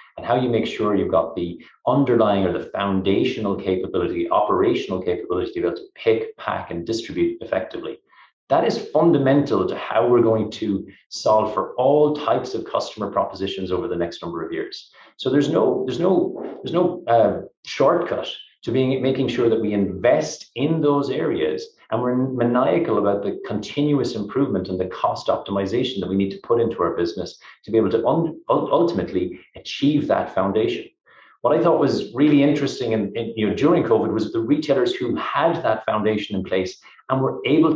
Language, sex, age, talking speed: English, male, 30-49, 175 wpm